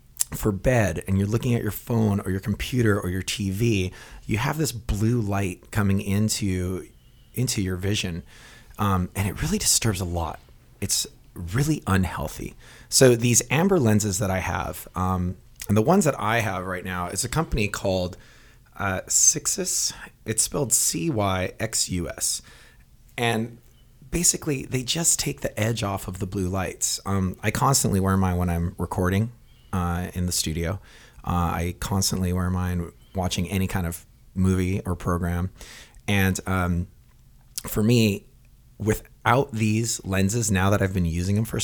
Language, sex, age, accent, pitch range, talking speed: English, male, 30-49, American, 90-115 Hz, 155 wpm